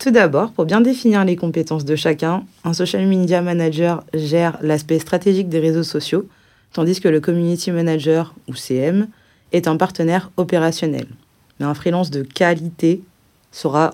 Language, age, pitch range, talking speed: French, 20-39, 150-175 Hz, 155 wpm